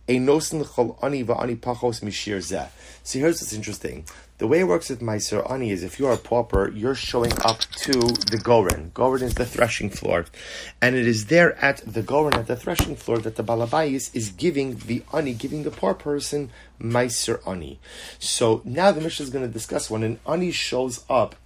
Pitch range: 110-140 Hz